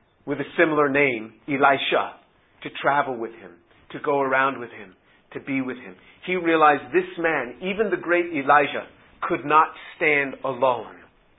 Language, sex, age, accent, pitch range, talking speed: English, male, 50-69, American, 145-180 Hz, 160 wpm